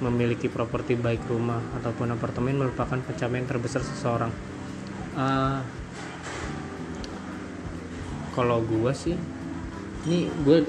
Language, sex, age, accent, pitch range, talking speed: Indonesian, male, 20-39, native, 105-125 Hz, 90 wpm